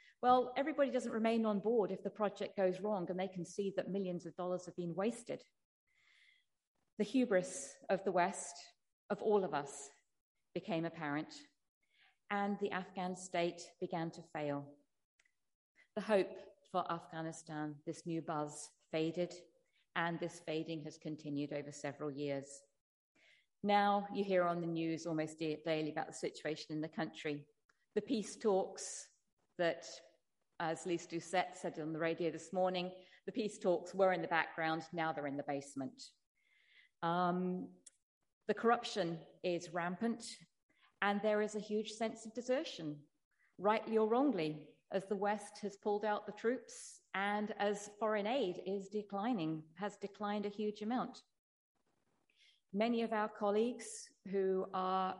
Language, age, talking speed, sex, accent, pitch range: English, 40-59, 150 wpm, female, British, 165-210 Hz